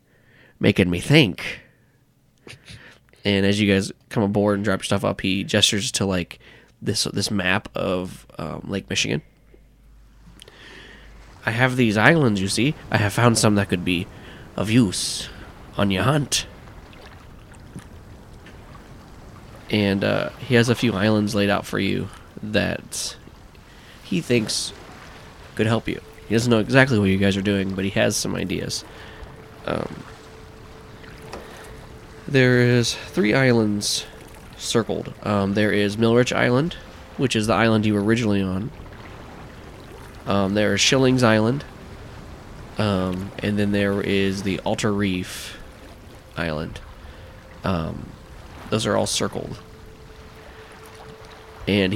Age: 20-39